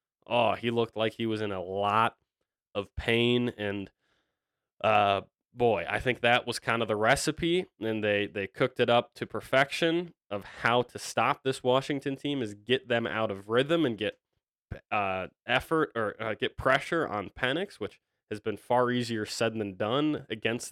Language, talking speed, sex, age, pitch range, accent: English, 180 wpm, male, 20-39, 105-120 Hz, American